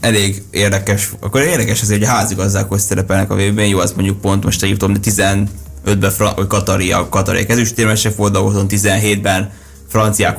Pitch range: 95-110 Hz